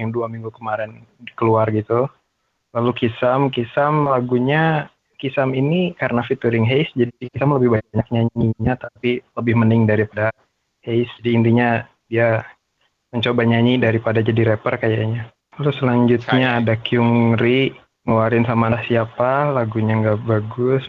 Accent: native